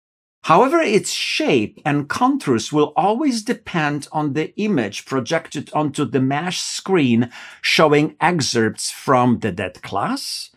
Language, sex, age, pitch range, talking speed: Polish, male, 50-69, 125-180 Hz, 125 wpm